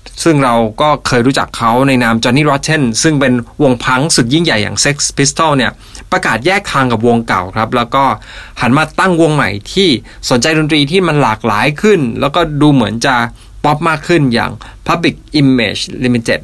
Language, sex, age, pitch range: Thai, male, 20-39, 115-150 Hz